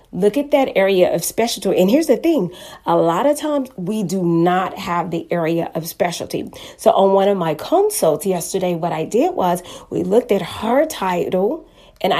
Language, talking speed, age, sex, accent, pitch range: English, 190 wpm, 30-49, female, American, 175-220 Hz